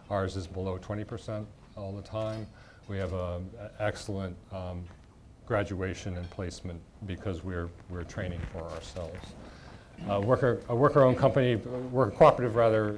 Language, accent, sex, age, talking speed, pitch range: English, American, male, 50-69, 145 wpm, 95-110 Hz